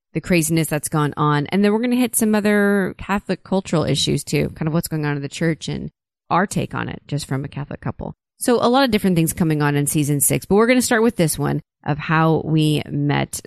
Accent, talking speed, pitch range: American, 260 wpm, 160-190 Hz